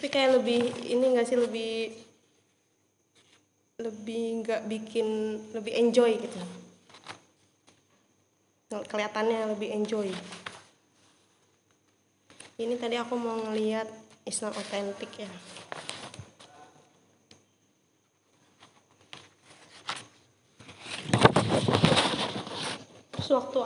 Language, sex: Indonesian, female